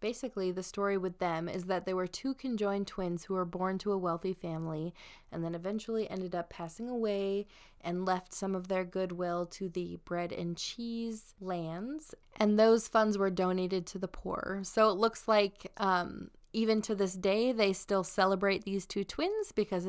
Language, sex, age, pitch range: English, female, 20-39, 180-210 Hz